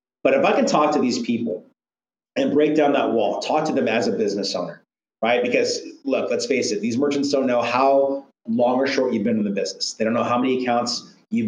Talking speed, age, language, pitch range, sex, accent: 240 wpm, 30-49, English, 110-140 Hz, male, American